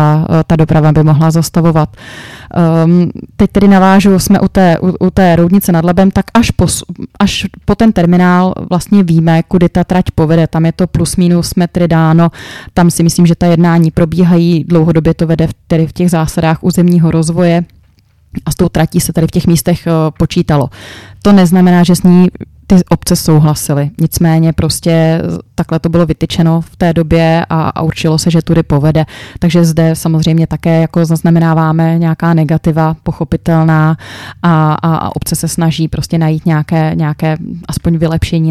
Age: 20-39